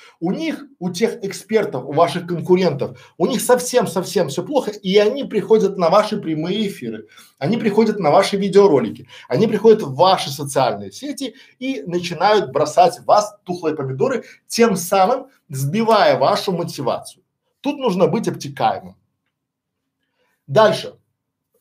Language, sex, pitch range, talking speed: Russian, male, 150-215 Hz, 130 wpm